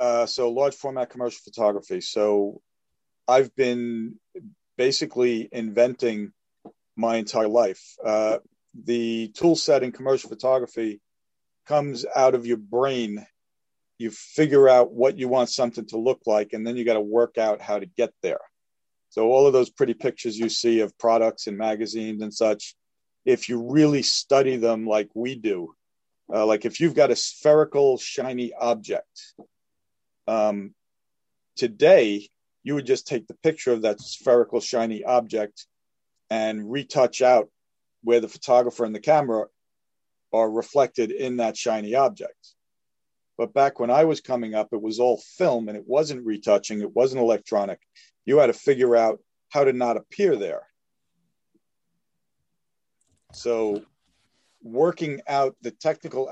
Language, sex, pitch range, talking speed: English, male, 110-135 Hz, 150 wpm